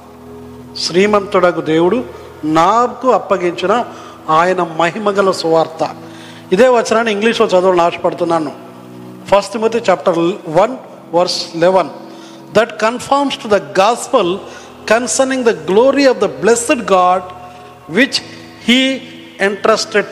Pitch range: 165-225 Hz